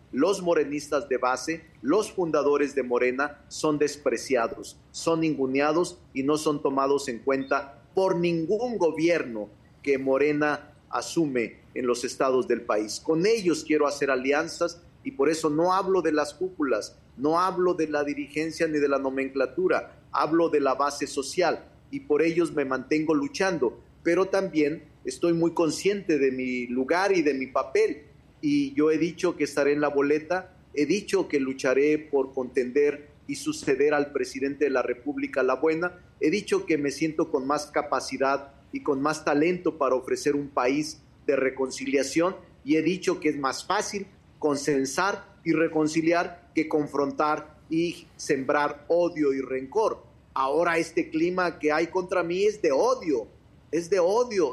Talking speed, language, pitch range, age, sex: 160 wpm, Spanish, 140-175 Hz, 40-59, male